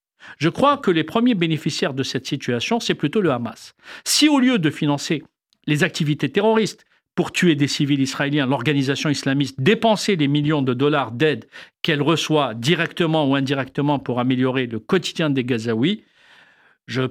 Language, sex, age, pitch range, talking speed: French, male, 50-69, 135-185 Hz, 160 wpm